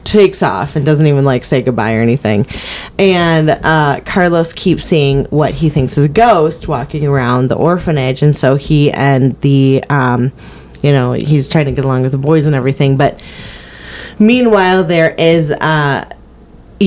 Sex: female